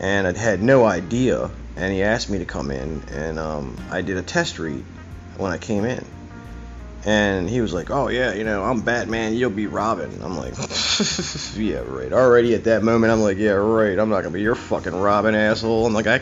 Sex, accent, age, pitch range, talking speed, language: male, American, 30-49, 85-115 Hz, 220 wpm, English